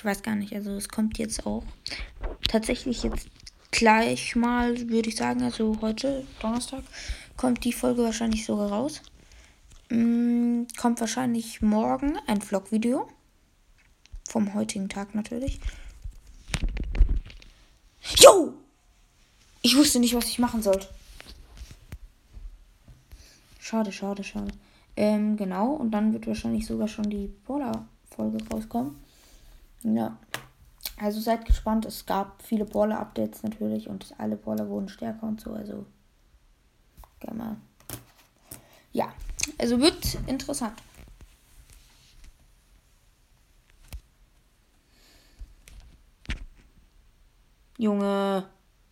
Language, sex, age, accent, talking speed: German, female, 20-39, German, 100 wpm